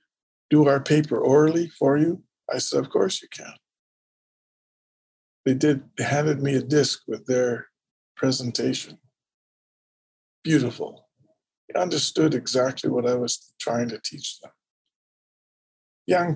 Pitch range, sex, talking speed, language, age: 115-145 Hz, male, 125 wpm, English, 50-69